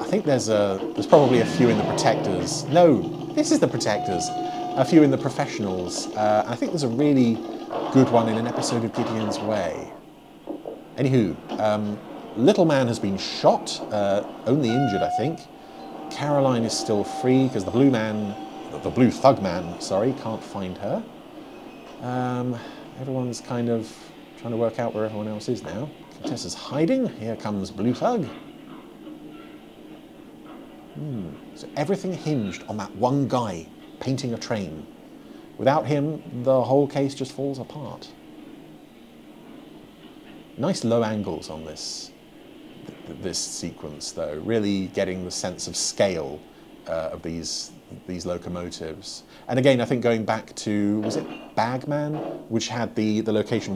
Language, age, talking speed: English, 30-49, 150 wpm